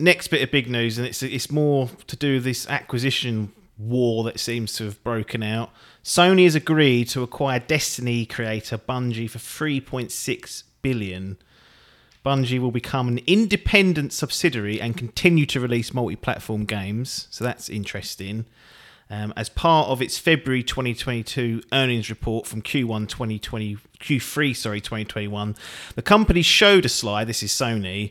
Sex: male